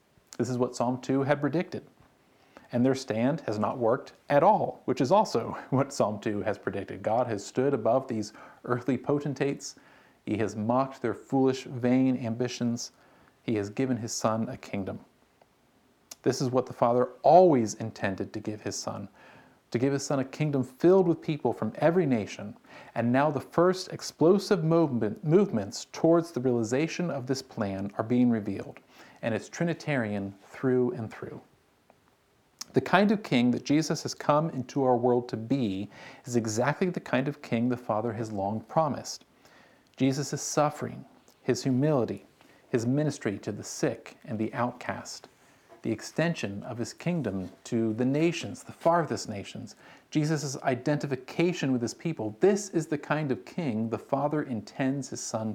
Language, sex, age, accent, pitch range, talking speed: English, male, 40-59, American, 115-150 Hz, 165 wpm